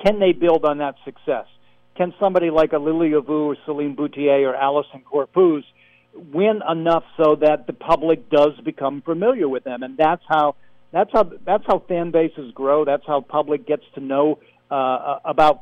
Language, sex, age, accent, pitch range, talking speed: English, male, 60-79, American, 140-170 Hz, 180 wpm